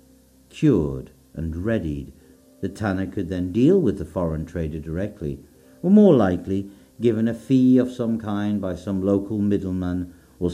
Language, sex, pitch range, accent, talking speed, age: English, male, 70-110 Hz, British, 155 wpm, 60-79